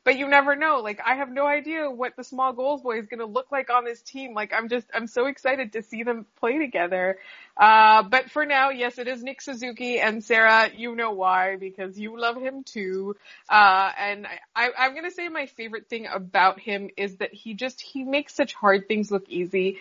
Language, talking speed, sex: English, 225 wpm, female